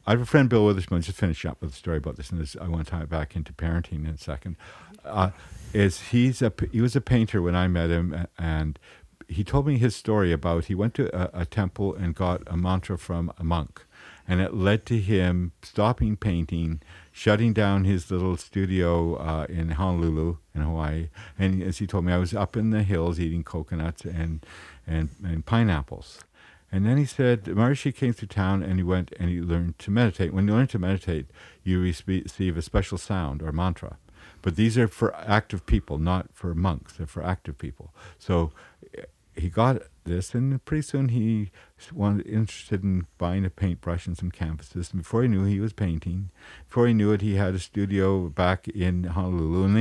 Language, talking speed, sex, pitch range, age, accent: English, 210 wpm, male, 85-105 Hz, 50-69, American